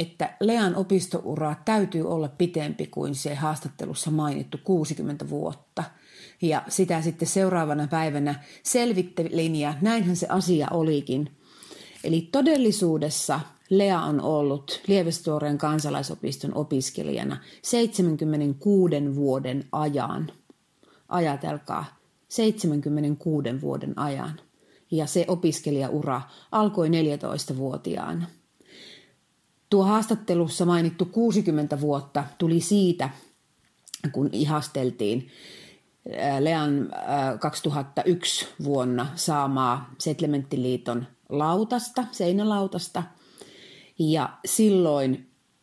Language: Finnish